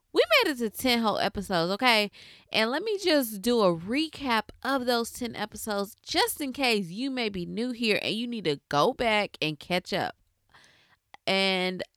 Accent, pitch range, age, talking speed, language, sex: American, 180-235 Hz, 20-39, 185 wpm, English, female